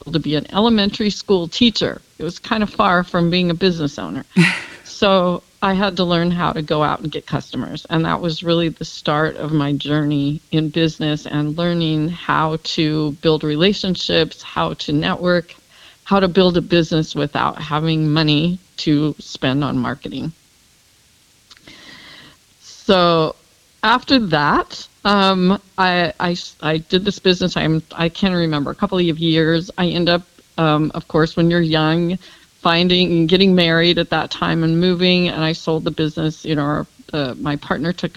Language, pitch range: English, 155-185 Hz